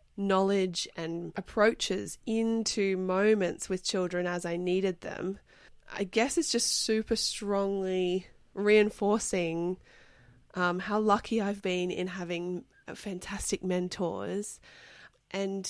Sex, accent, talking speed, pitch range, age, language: female, Australian, 105 wpm, 180-210 Hz, 20-39, English